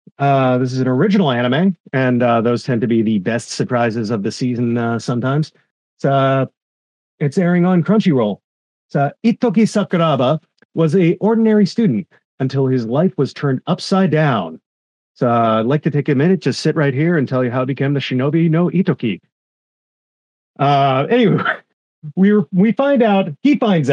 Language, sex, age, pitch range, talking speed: English, male, 40-59, 130-185 Hz, 180 wpm